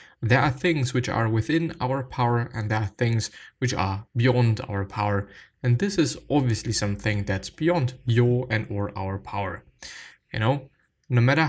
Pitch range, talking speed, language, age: 100-125 Hz, 170 wpm, English, 20-39